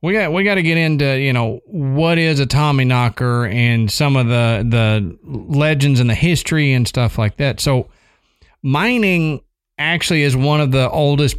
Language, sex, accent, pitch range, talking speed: English, male, American, 115-145 Hz, 180 wpm